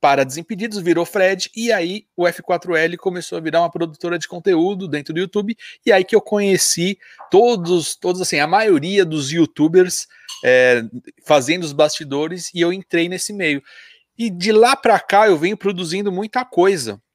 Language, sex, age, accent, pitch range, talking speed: Portuguese, male, 40-59, Brazilian, 145-200 Hz, 170 wpm